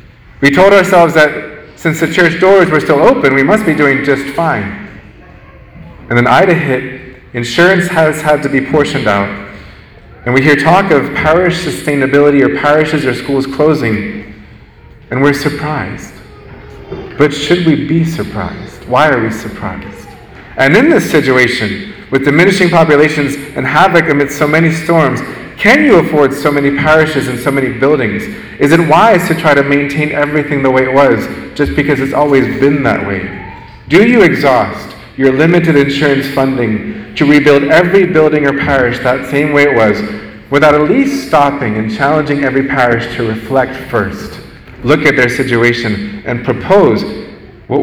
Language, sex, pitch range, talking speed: English, male, 120-150 Hz, 165 wpm